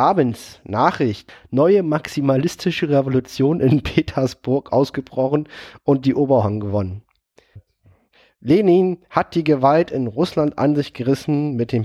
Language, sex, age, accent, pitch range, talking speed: German, male, 30-49, German, 120-150 Hz, 115 wpm